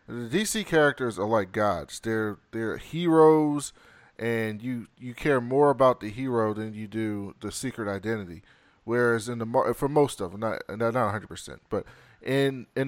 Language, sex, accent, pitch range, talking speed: English, male, American, 110-130 Hz, 170 wpm